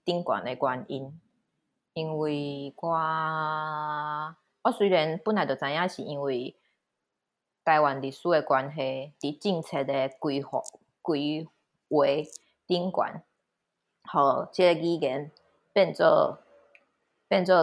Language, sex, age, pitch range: Chinese, female, 20-39, 150-185 Hz